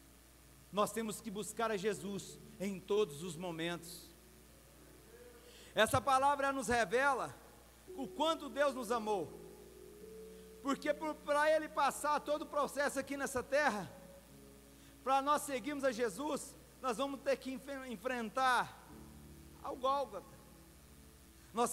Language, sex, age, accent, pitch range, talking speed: Portuguese, male, 50-69, Brazilian, 175-265 Hz, 120 wpm